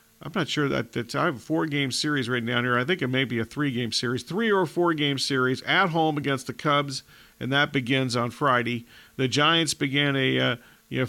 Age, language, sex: 50-69, English, male